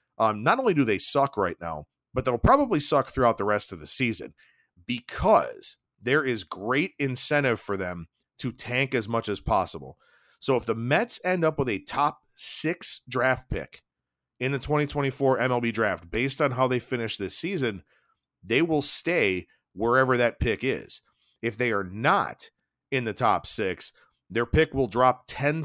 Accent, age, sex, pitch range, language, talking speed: American, 40-59, male, 100-130 Hz, English, 175 wpm